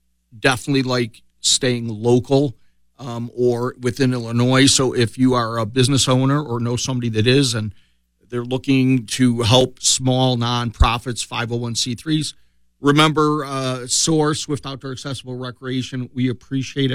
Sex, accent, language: male, American, English